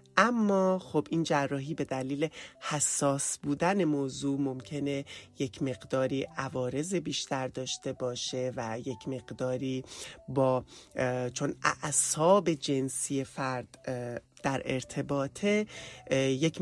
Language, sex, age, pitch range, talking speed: English, male, 30-49, 130-165 Hz, 100 wpm